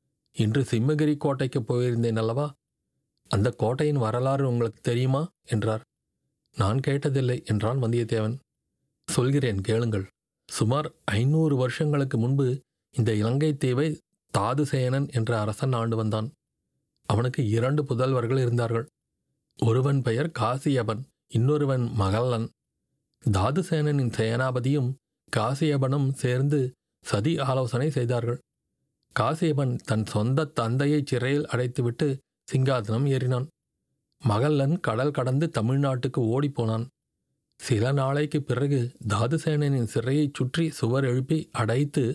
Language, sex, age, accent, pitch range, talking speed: Tamil, male, 40-59, native, 115-145 Hz, 95 wpm